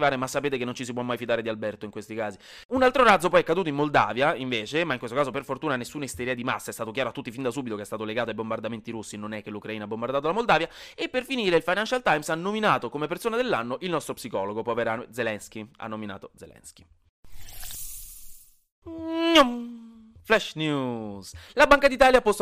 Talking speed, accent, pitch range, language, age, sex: 220 wpm, native, 125-185 Hz, Italian, 30-49, male